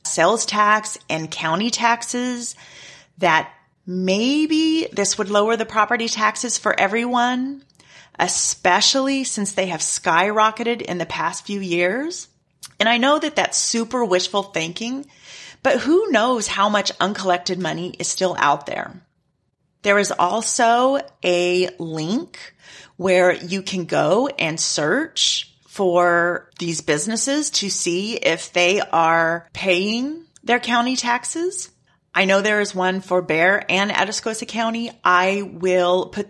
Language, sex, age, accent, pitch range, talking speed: English, female, 30-49, American, 175-235 Hz, 130 wpm